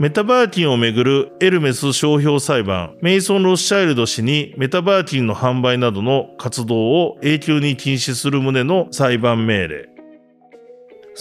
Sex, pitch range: male, 115-180 Hz